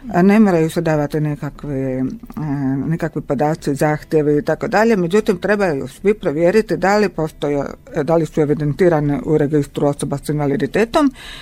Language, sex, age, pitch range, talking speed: Croatian, female, 50-69, 150-200 Hz, 135 wpm